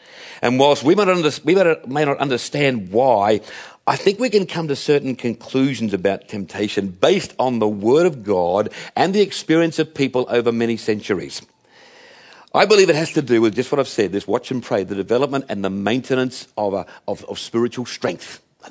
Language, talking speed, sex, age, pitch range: English, 185 wpm, male, 50-69, 130-185 Hz